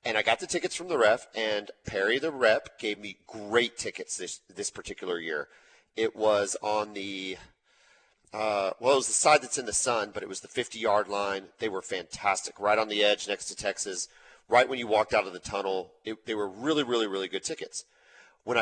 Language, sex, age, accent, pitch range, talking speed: English, male, 40-59, American, 105-135 Hz, 215 wpm